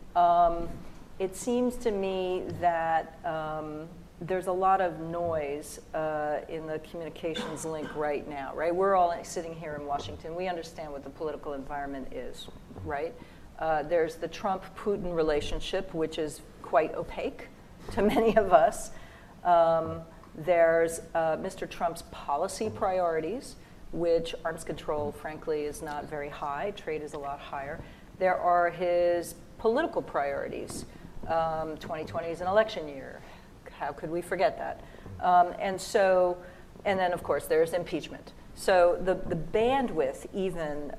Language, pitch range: English, 155-185 Hz